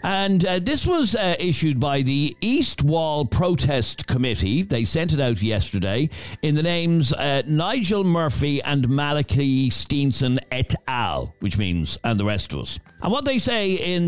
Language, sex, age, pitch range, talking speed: English, male, 50-69, 120-170 Hz, 170 wpm